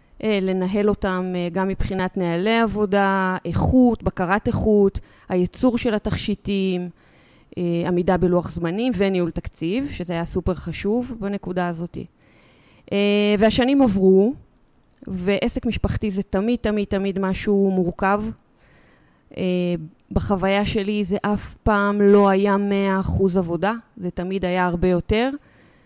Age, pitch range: 20-39, 180-210 Hz